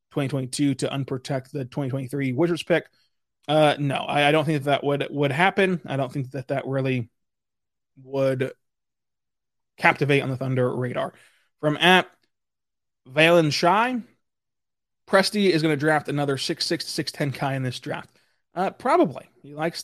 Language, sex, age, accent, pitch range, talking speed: English, male, 20-39, American, 135-160 Hz, 155 wpm